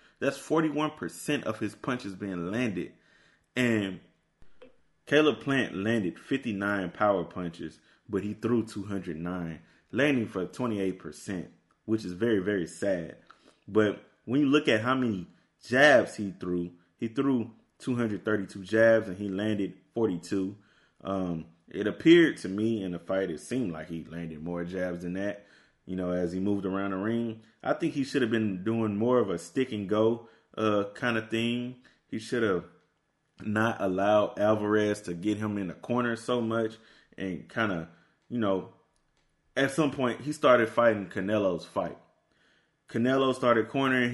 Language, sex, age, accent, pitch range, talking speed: English, male, 20-39, American, 95-120 Hz, 160 wpm